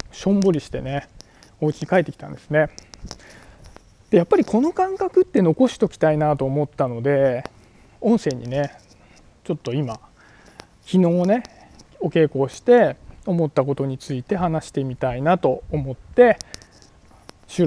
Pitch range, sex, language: 140-205 Hz, male, Japanese